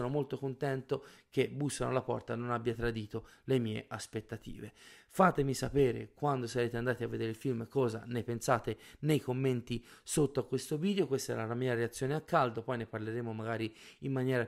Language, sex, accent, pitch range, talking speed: Italian, male, native, 120-145 Hz, 180 wpm